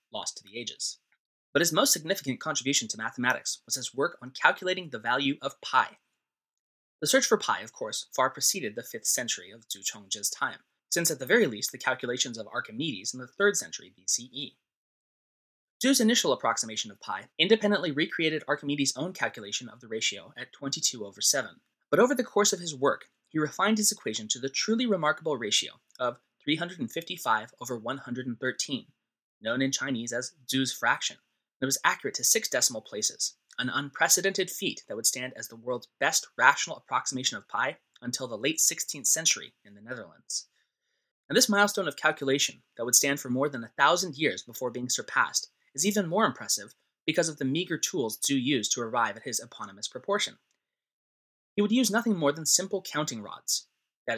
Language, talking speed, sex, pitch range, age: English, 185 wpm, male, 125-190 Hz, 20-39